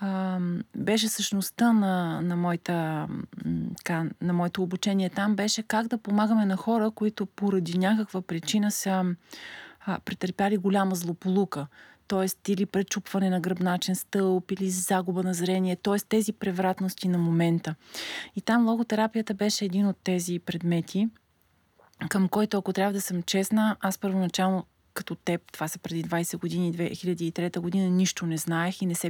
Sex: female